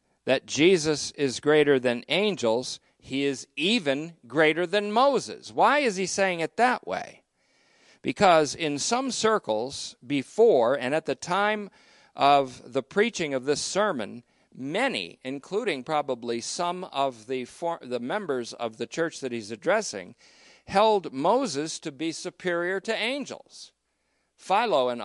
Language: English